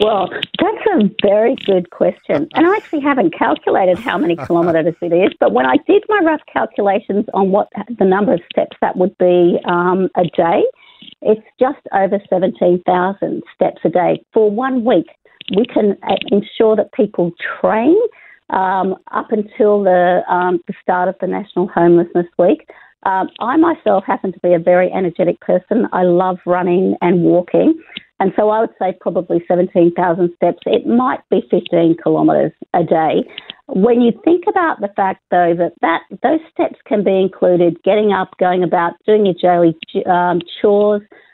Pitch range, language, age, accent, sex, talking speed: 175-220 Hz, English, 50-69, Australian, female, 165 wpm